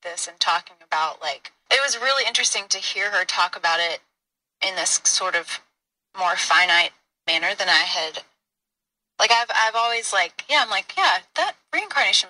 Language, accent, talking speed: English, American, 175 wpm